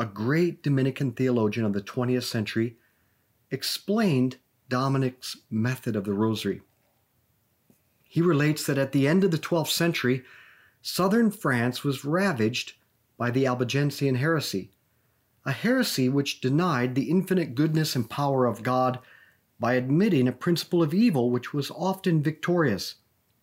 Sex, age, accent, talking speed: male, 40-59, American, 135 wpm